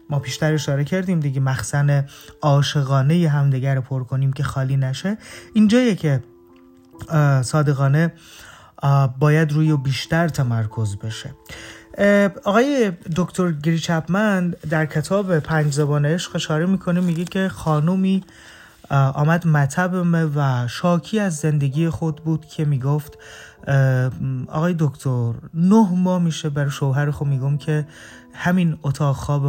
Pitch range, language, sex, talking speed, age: 135-180 Hz, Persian, male, 120 wpm, 30-49